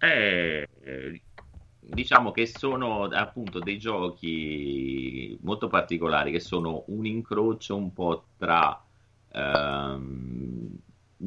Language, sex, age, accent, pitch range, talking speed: Italian, male, 30-49, native, 70-95 Hz, 90 wpm